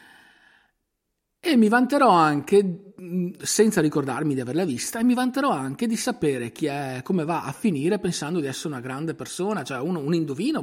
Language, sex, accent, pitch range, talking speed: Italian, male, native, 120-170 Hz, 175 wpm